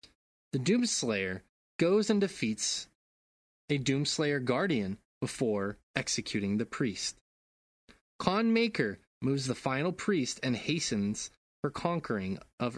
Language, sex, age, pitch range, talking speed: English, male, 20-39, 110-165 Hz, 110 wpm